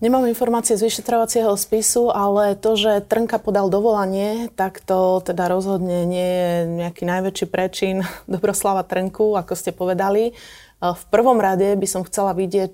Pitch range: 175-215 Hz